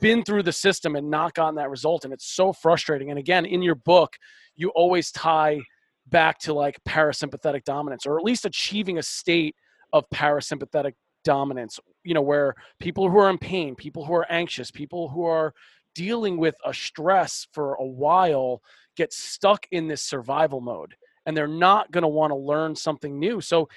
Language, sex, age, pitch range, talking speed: English, male, 30-49, 150-185 Hz, 185 wpm